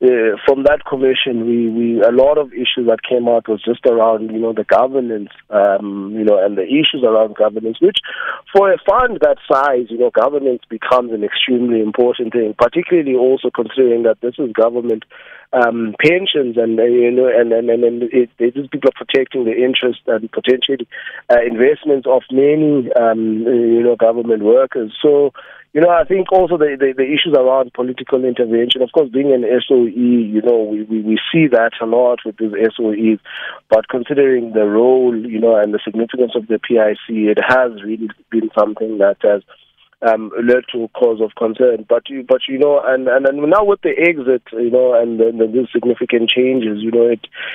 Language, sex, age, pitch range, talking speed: English, male, 30-49, 115-135 Hz, 195 wpm